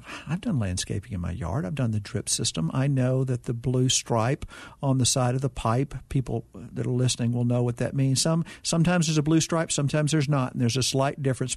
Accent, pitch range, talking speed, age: American, 125-155 Hz, 240 wpm, 50-69